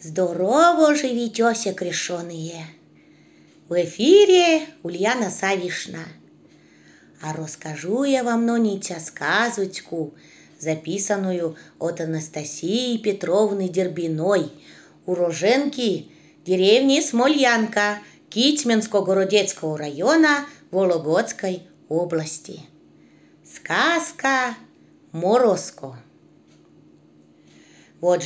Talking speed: 60 wpm